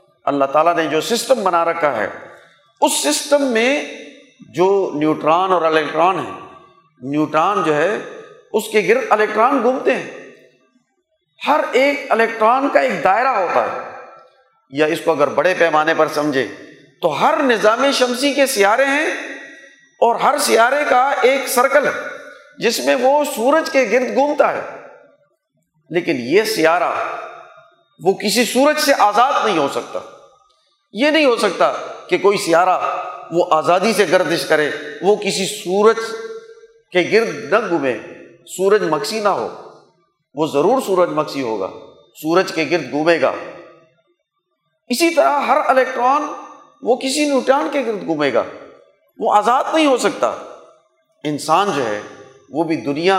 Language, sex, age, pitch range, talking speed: Urdu, male, 50-69, 175-290 Hz, 145 wpm